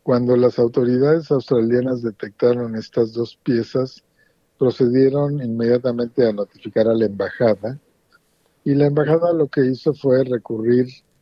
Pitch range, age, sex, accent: 110-135 Hz, 50-69, male, Mexican